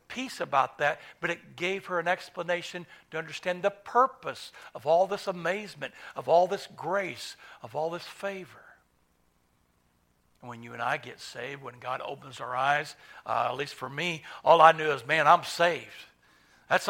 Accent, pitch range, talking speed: American, 135-175 Hz, 175 wpm